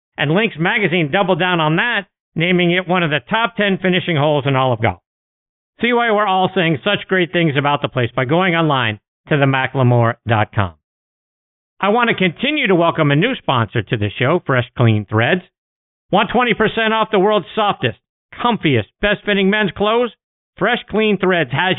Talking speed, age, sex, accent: 180 wpm, 50-69, male, American